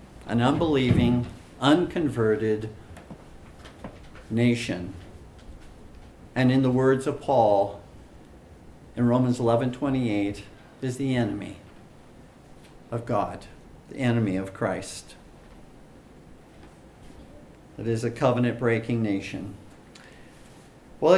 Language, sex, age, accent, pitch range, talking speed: English, male, 50-69, American, 110-145 Hz, 80 wpm